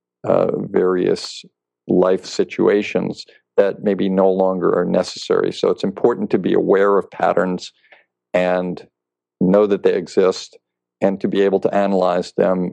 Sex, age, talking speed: male, 50-69, 140 wpm